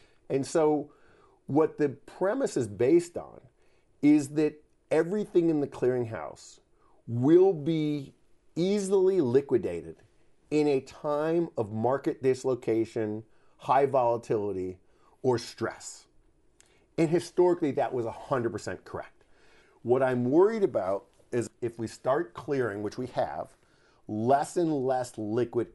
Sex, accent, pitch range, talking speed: male, American, 110-150 Hz, 115 wpm